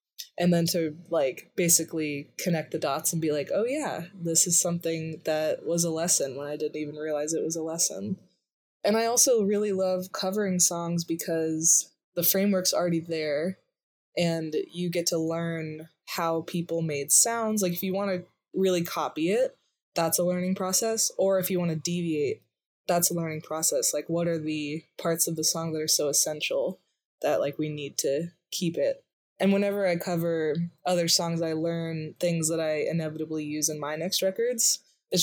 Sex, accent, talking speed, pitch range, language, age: female, American, 185 wpm, 160-185 Hz, English, 20-39